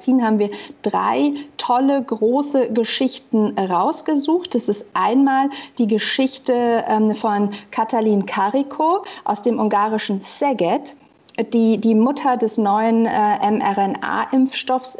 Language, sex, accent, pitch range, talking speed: German, female, German, 215-265 Hz, 100 wpm